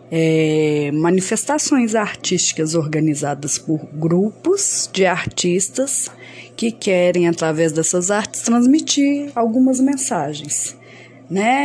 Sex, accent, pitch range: female, Brazilian, 150-210 Hz